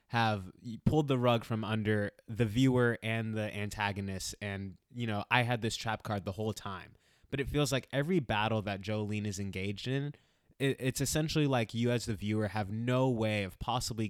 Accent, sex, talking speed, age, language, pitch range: American, male, 195 wpm, 20-39, English, 105-130 Hz